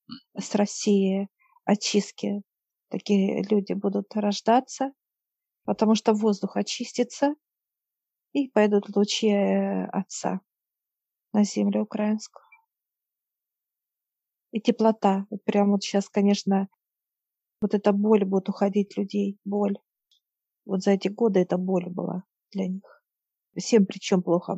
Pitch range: 195-215 Hz